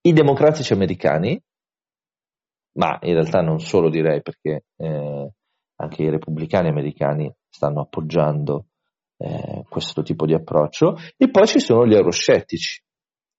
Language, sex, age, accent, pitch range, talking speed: Italian, male, 40-59, native, 85-125 Hz, 125 wpm